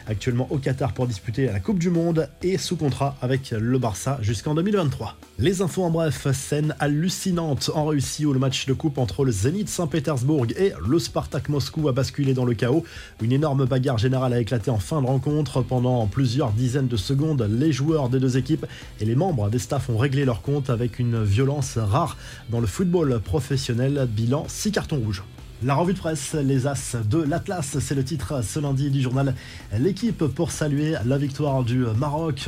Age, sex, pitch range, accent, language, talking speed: 20-39, male, 125-155 Hz, French, French, 195 wpm